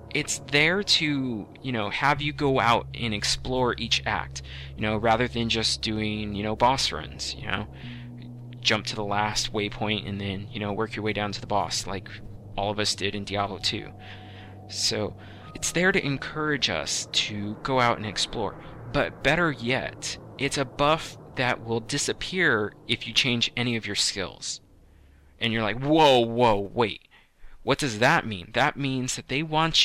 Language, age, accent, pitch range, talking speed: English, 20-39, American, 100-125 Hz, 185 wpm